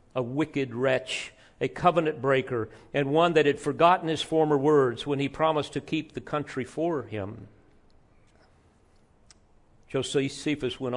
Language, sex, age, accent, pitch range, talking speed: English, male, 50-69, American, 125-160 Hz, 135 wpm